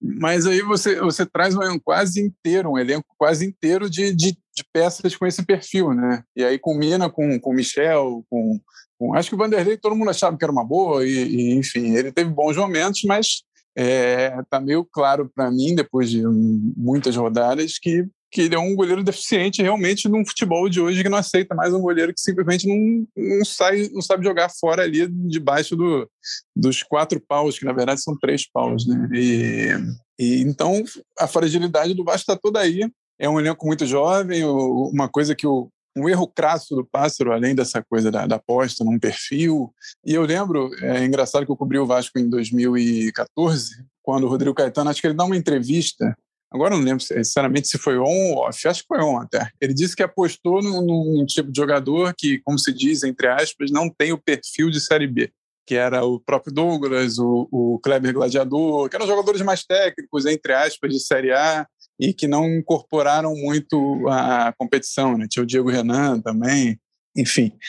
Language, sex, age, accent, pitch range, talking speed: Portuguese, male, 20-39, Brazilian, 130-180 Hz, 200 wpm